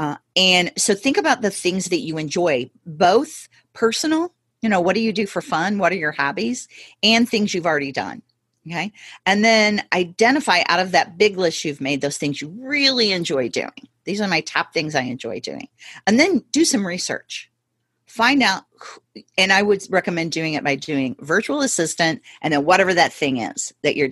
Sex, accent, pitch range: female, American, 160-235 Hz